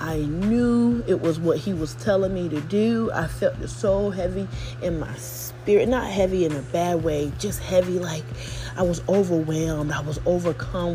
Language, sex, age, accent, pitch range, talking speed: English, female, 30-49, American, 145-180 Hz, 185 wpm